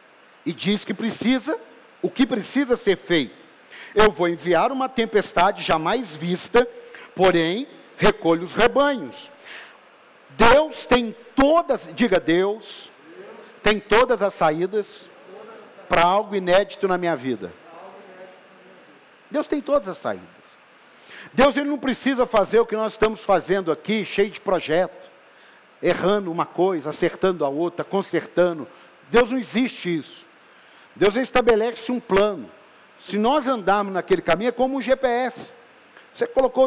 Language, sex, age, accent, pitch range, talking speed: Portuguese, male, 50-69, Brazilian, 185-250 Hz, 130 wpm